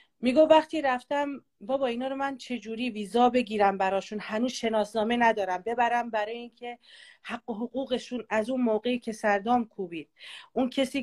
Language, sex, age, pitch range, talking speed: Persian, female, 40-59, 215-275 Hz, 150 wpm